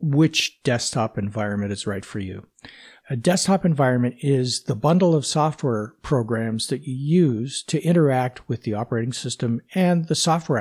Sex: male